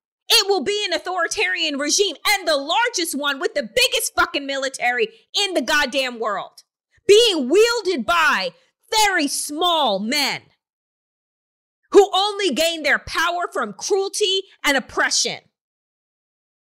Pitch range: 310-415 Hz